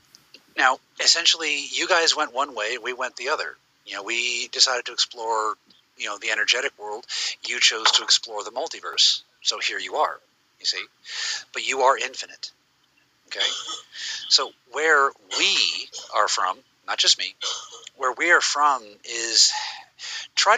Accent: American